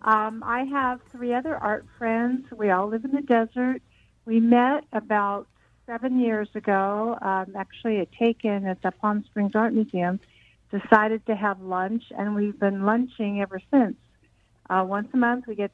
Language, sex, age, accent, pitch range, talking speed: English, female, 60-79, American, 195-235 Hz, 170 wpm